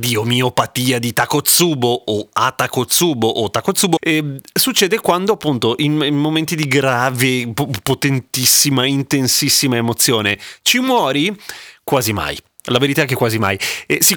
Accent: native